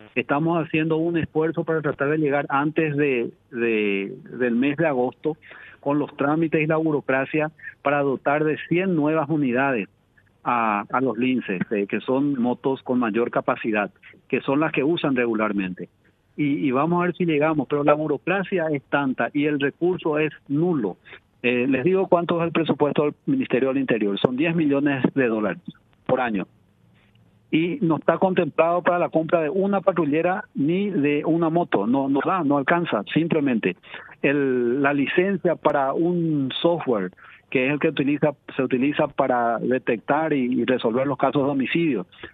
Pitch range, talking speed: 130-165 Hz, 175 wpm